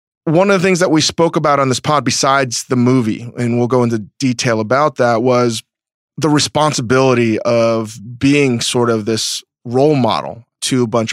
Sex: male